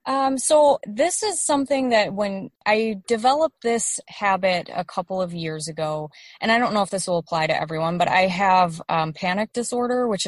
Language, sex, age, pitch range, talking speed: English, female, 20-39, 165-205 Hz, 195 wpm